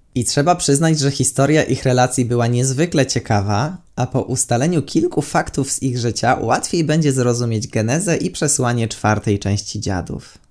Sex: male